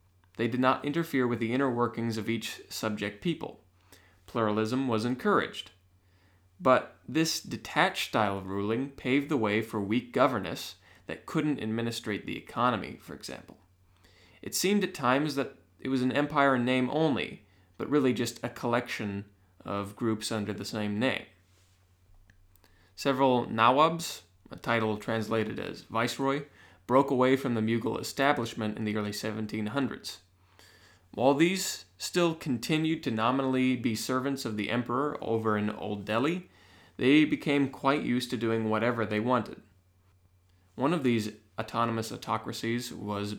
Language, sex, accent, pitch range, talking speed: English, male, American, 100-130 Hz, 145 wpm